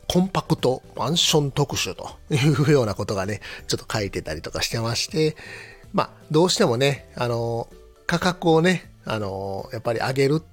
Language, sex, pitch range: Japanese, male, 110-145 Hz